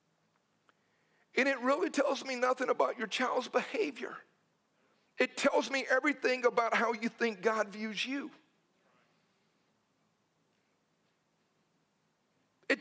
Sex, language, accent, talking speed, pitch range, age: male, English, American, 105 wpm, 235-305 Hz, 50-69